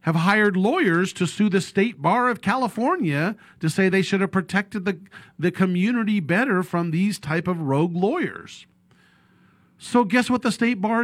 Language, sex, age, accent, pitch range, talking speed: English, male, 40-59, American, 140-195 Hz, 175 wpm